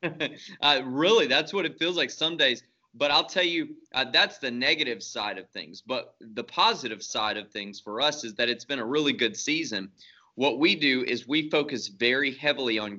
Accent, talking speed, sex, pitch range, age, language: American, 210 wpm, male, 115-150 Hz, 20-39, English